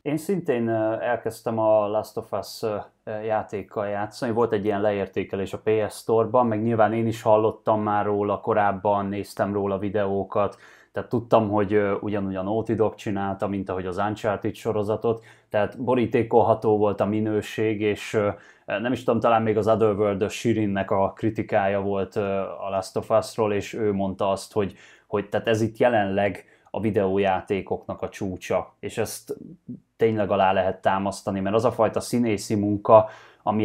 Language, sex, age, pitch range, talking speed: Hungarian, male, 20-39, 95-110 Hz, 160 wpm